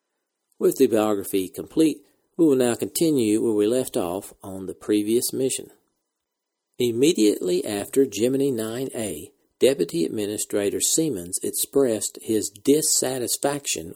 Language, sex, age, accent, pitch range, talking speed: English, male, 50-69, American, 105-135 Hz, 110 wpm